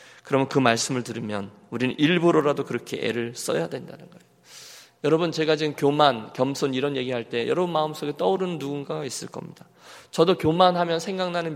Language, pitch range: Korean, 120-175 Hz